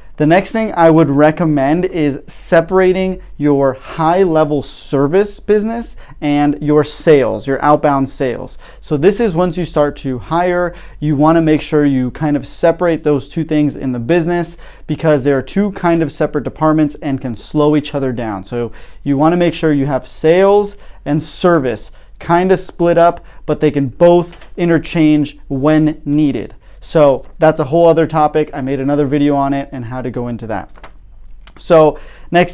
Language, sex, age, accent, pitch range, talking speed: English, male, 30-49, American, 140-165 Hz, 180 wpm